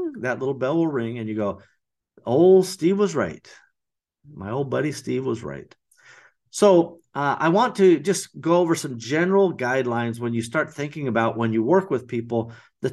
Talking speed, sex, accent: 190 wpm, male, American